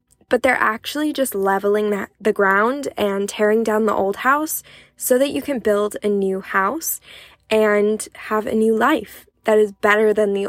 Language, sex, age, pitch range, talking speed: English, female, 10-29, 195-230 Hz, 185 wpm